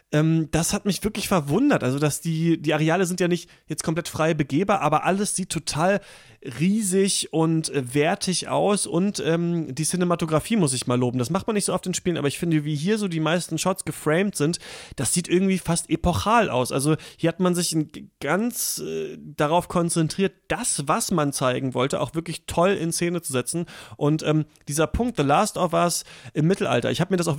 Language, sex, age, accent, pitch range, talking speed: German, male, 30-49, German, 145-180 Hz, 210 wpm